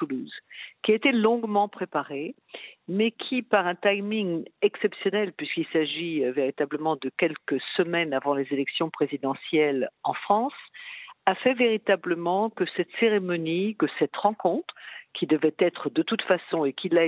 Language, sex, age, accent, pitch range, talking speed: French, female, 50-69, French, 150-200 Hz, 145 wpm